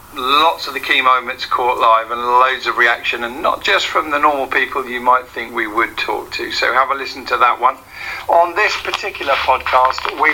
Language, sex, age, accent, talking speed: English, male, 50-69, British, 215 wpm